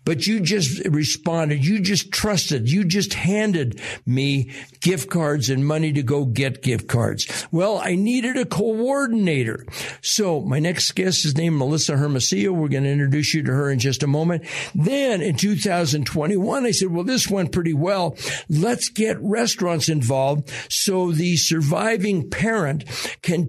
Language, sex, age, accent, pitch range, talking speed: English, male, 60-79, American, 145-190 Hz, 160 wpm